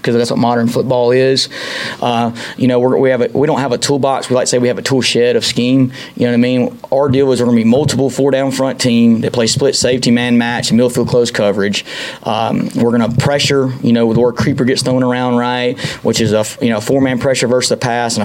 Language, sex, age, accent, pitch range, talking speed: English, male, 20-39, American, 120-135 Hz, 265 wpm